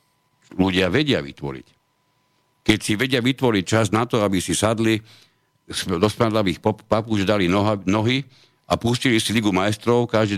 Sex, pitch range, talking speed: male, 85-110 Hz, 150 wpm